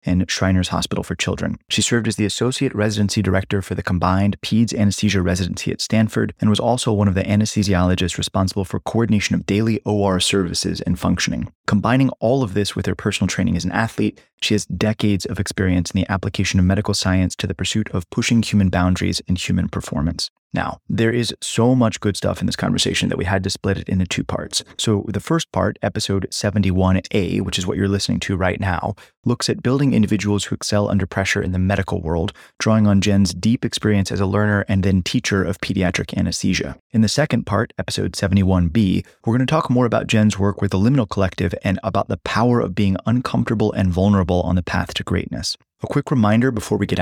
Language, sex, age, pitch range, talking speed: English, male, 20-39, 95-110 Hz, 210 wpm